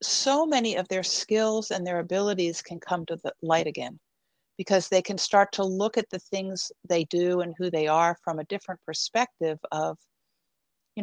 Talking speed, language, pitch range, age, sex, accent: 190 wpm, English, 170-220 Hz, 60-79, female, American